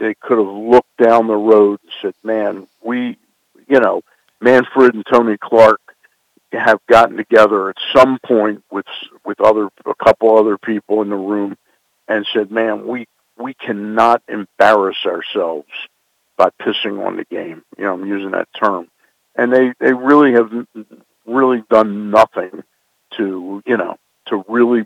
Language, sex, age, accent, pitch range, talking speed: English, male, 60-79, American, 105-120 Hz, 155 wpm